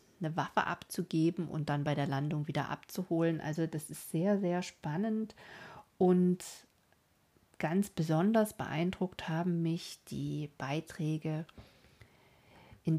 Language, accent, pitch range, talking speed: German, German, 155-180 Hz, 115 wpm